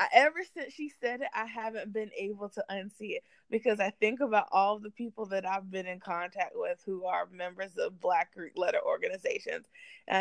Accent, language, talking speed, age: American, English, 205 wpm, 20-39